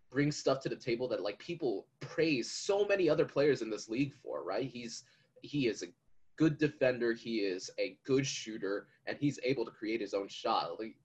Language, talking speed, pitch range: English, 195 wpm, 115-160 Hz